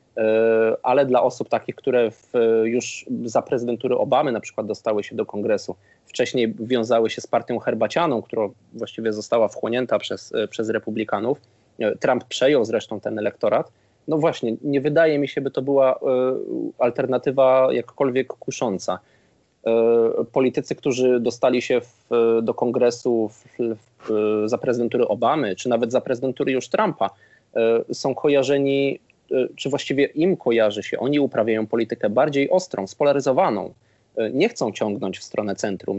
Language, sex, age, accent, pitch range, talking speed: Polish, male, 20-39, native, 110-135 Hz, 130 wpm